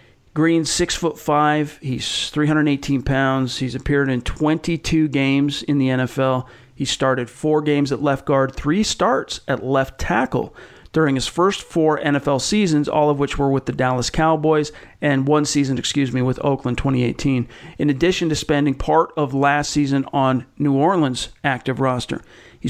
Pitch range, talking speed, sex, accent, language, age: 135-155 Hz, 160 wpm, male, American, English, 40-59